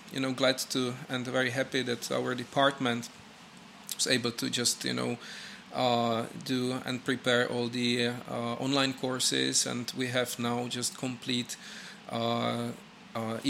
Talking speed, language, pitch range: 140 wpm, Czech, 120-135 Hz